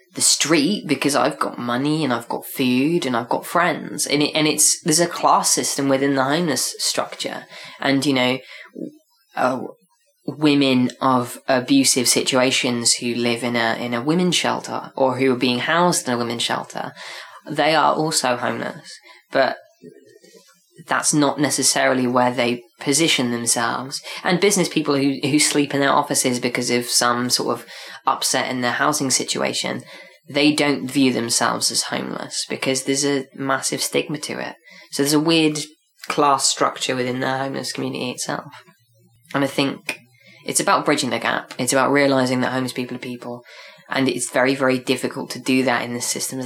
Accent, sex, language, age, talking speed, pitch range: British, female, English, 20-39, 170 wpm, 125-145 Hz